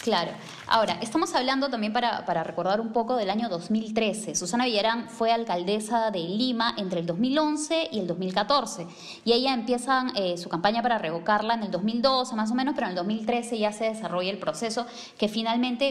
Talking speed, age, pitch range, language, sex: 190 wpm, 20-39, 200-250 Hz, Spanish, female